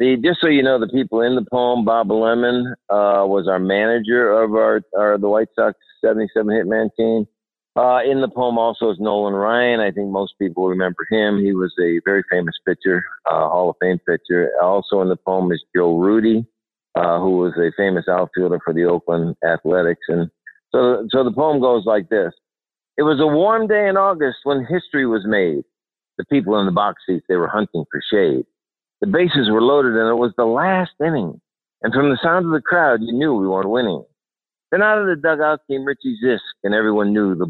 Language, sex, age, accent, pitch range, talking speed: English, male, 50-69, American, 100-150 Hz, 210 wpm